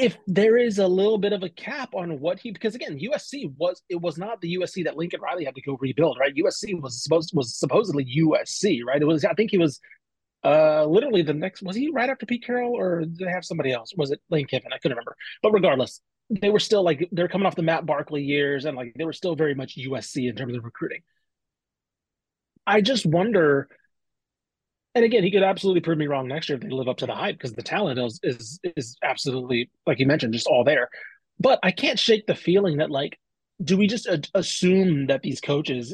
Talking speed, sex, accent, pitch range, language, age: 230 wpm, male, American, 140-185 Hz, English, 30-49